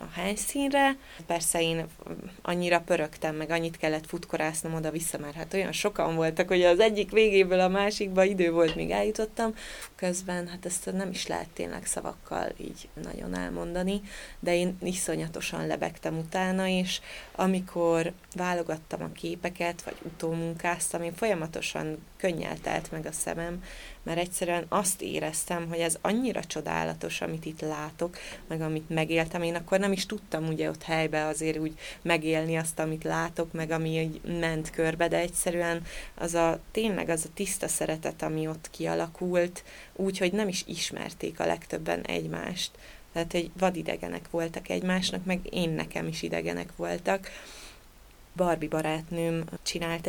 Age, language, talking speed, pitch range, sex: 20-39, Hungarian, 145 wpm, 160-180 Hz, female